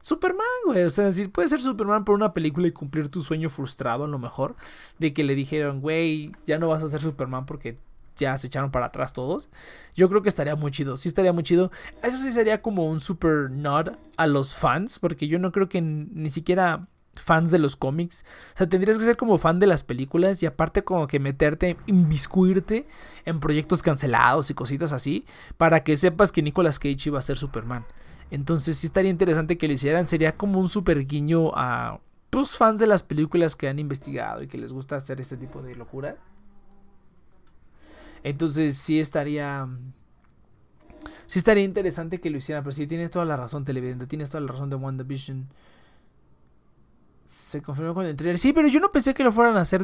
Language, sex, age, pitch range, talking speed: Spanish, male, 20-39, 145-195 Hz, 200 wpm